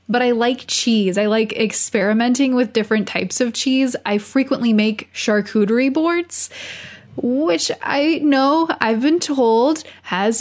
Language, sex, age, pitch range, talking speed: English, female, 10-29, 200-250 Hz, 140 wpm